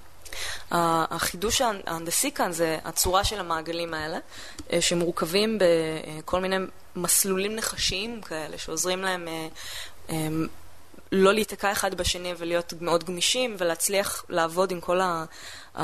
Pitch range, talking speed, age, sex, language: 170-200 Hz, 100 wpm, 20-39, female, Hebrew